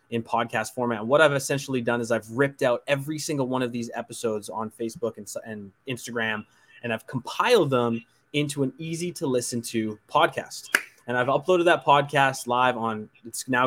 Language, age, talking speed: English, 20-39, 190 wpm